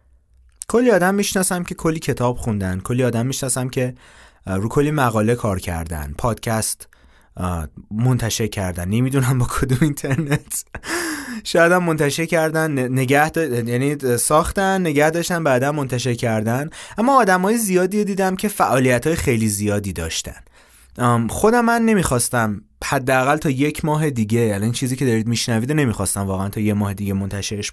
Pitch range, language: 105-160 Hz, Persian